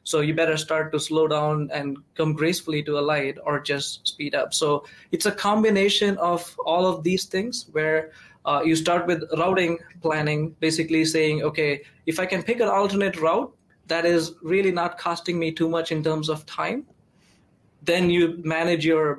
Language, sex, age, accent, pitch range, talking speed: English, male, 20-39, Indian, 155-175 Hz, 185 wpm